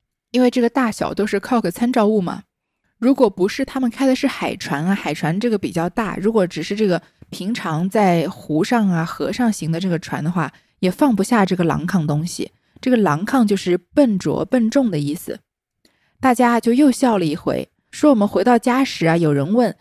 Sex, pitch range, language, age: female, 175-240 Hz, Chinese, 20-39